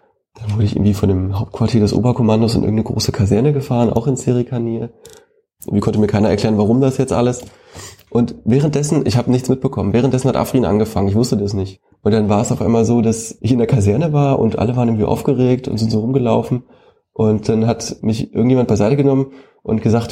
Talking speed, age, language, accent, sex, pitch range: 210 wpm, 20-39, German, German, male, 105-125 Hz